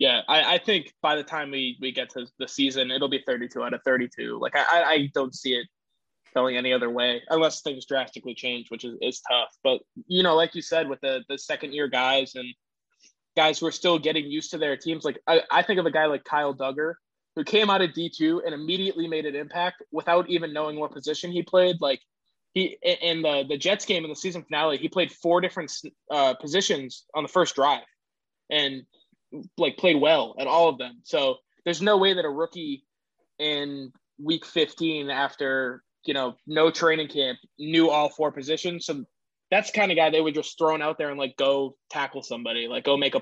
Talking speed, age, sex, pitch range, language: 215 wpm, 20-39, male, 135-165 Hz, English